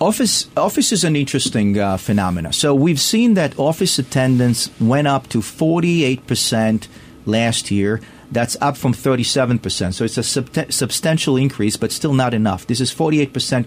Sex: male